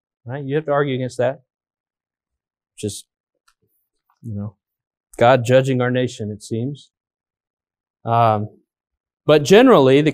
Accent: American